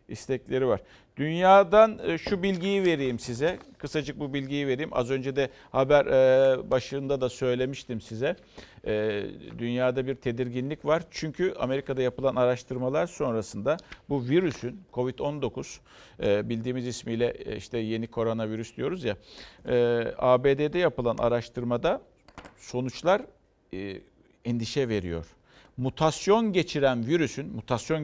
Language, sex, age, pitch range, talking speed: Turkish, male, 50-69, 115-150 Hz, 105 wpm